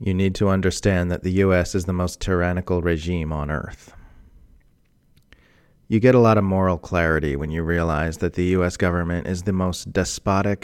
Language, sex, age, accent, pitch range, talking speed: English, male, 30-49, American, 80-95 Hz, 180 wpm